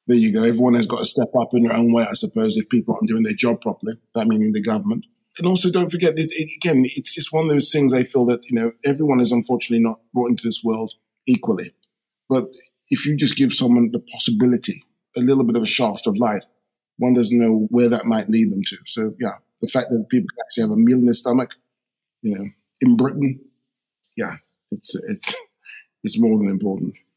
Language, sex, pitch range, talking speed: English, male, 120-175 Hz, 230 wpm